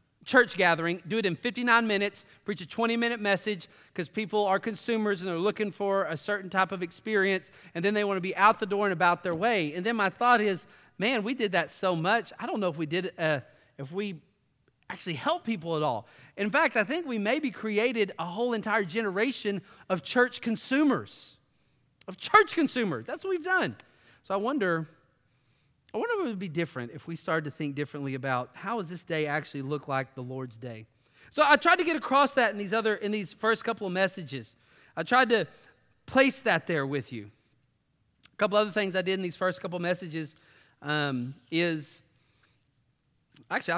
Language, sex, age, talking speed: English, male, 30-49, 205 wpm